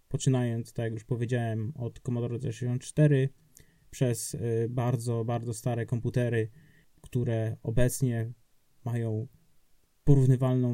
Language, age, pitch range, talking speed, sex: Polish, 20-39, 120-145 Hz, 95 wpm, male